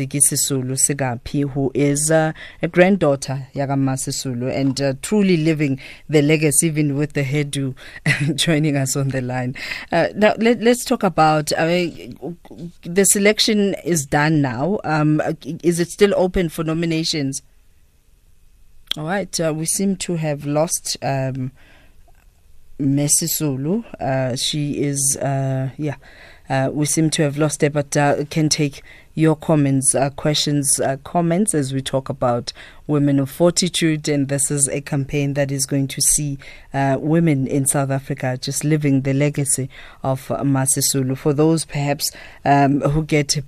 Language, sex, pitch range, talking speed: English, female, 135-160 Hz, 150 wpm